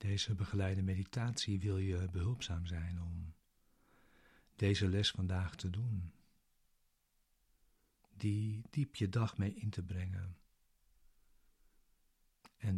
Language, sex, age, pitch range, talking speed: Dutch, male, 50-69, 90-105 Hz, 105 wpm